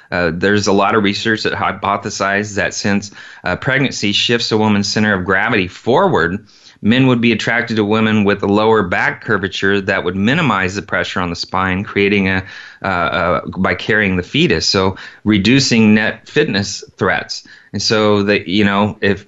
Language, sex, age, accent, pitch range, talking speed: English, male, 30-49, American, 100-120 Hz, 175 wpm